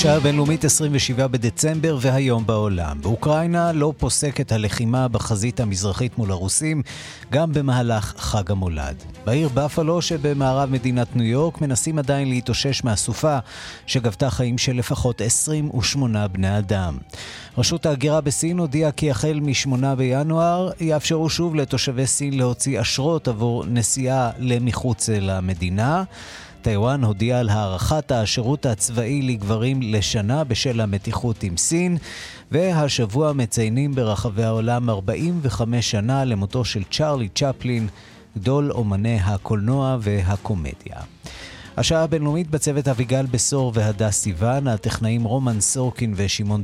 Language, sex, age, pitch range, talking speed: Hebrew, male, 30-49, 110-140 Hz, 115 wpm